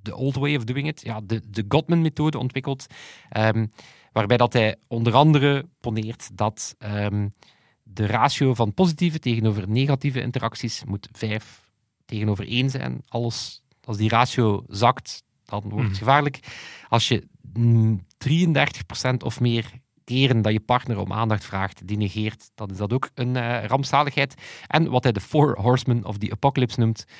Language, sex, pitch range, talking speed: Dutch, male, 105-130 Hz, 160 wpm